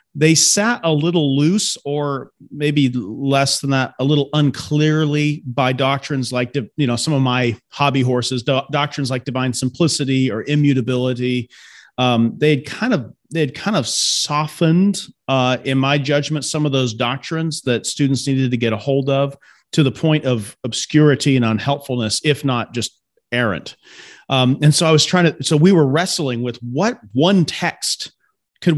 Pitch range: 125-150 Hz